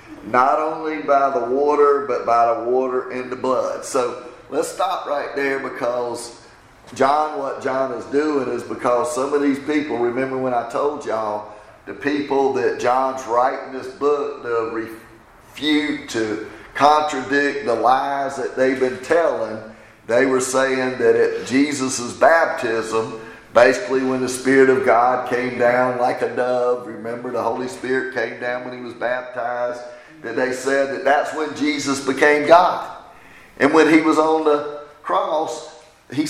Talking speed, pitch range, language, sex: 160 wpm, 120-145 Hz, English, male